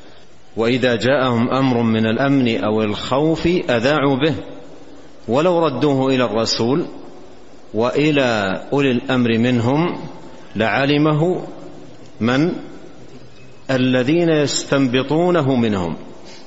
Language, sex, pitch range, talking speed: Arabic, male, 115-145 Hz, 80 wpm